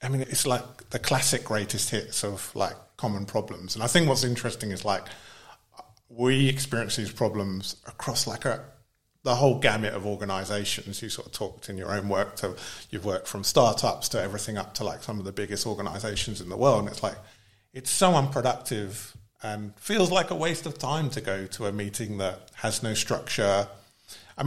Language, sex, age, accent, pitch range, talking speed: English, male, 30-49, British, 105-130 Hz, 195 wpm